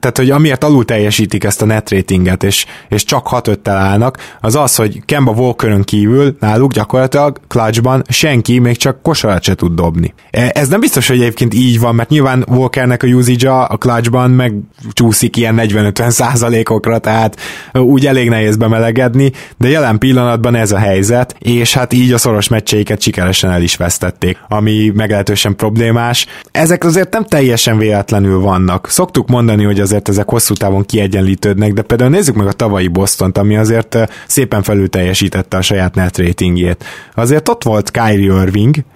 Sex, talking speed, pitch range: male, 165 wpm, 105-125 Hz